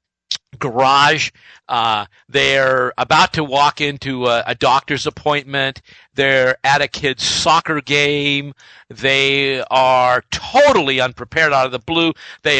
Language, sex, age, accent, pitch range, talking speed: English, male, 50-69, American, 125-170 Hz, 125 wpm